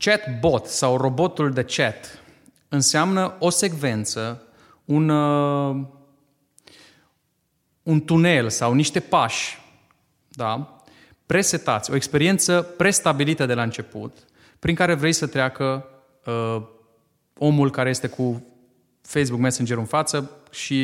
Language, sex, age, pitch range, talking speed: Romanian, male, 30-49, 120-160 Hz, 100 wpm